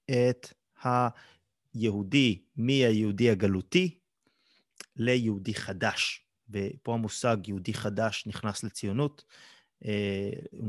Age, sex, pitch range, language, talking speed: 30-49, male, 105-125 Hz, Hebrew, 80 wpm